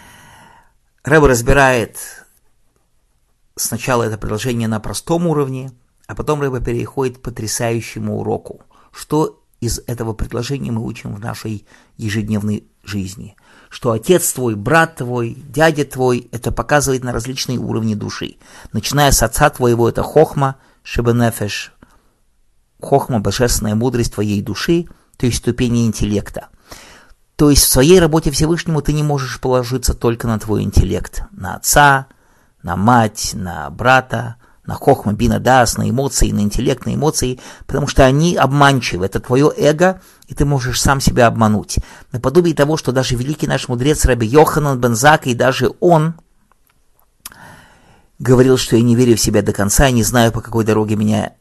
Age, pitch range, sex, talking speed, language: 50-69, 110-135 Hz, male, 145 wpm, English